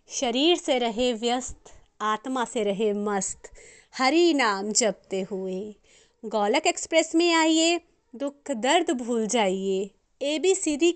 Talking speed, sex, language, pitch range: 115 wpm, female, Hindi, 215-275 Hz